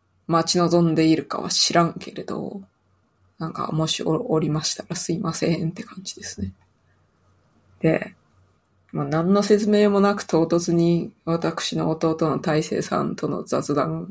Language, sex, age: Japanese, female, 20-39